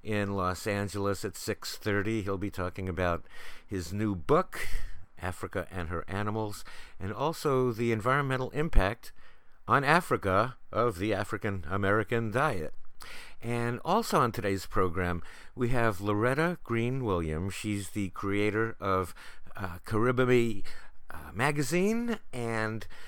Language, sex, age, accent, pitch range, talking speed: English, male, 50-69, American, 95-125 Hz, 115 wpm